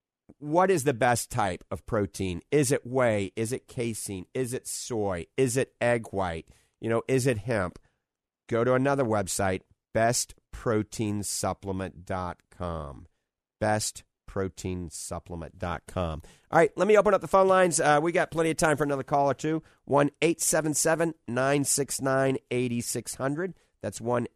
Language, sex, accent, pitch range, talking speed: English, male, American, 100-130 Hz, 135 wpm